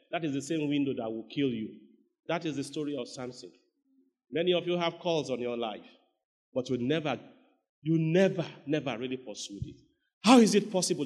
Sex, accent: male, Nigerian